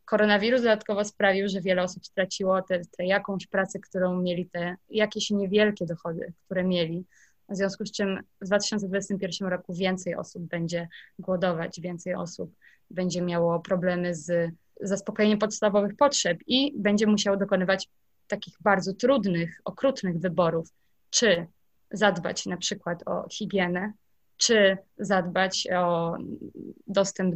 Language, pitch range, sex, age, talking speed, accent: Polish, 180-205 Hz, female, 20-39, 125 wpm, native